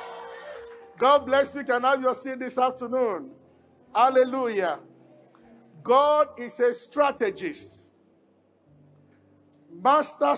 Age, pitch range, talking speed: 50-69, 210-300 Hz, 95 wpm